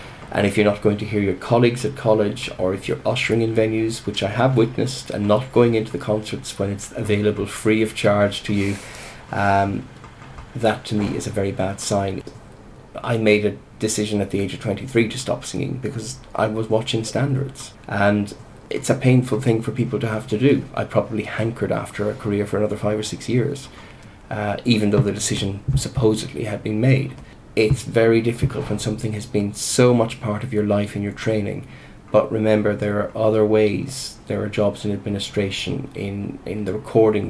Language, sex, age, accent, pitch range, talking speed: English, male, 30-49, Irish, 100-115 Hz, 200 wpm